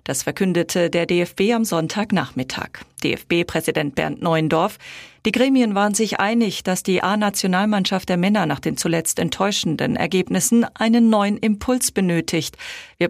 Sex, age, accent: female, 40-59, German